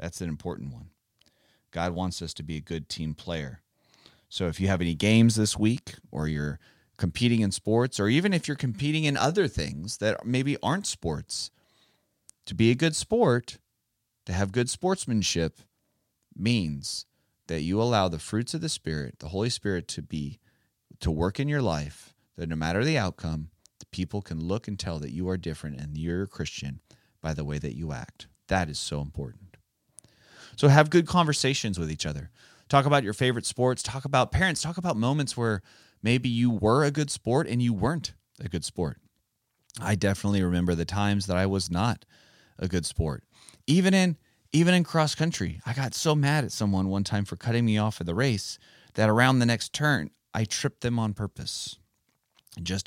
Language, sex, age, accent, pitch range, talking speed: English, male, 30-49, American, 85-125 Hz, 195 wpm